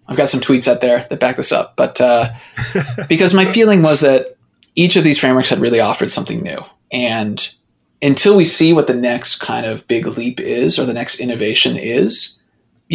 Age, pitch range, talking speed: 20-39, 120-150 Hz, 205 wpm